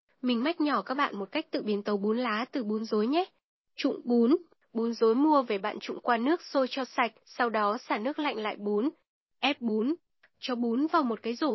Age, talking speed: 10-29, 230 wpm